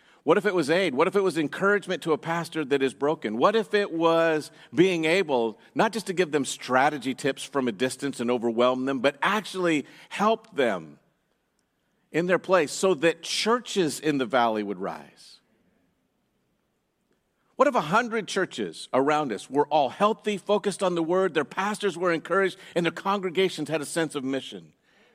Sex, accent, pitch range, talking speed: male, American, 155-225 Hz, 180 wpm